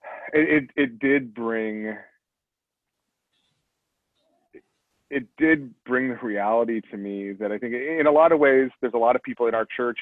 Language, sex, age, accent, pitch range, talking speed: English, male, 30-49, American, 100-125 Hz, 175 wpm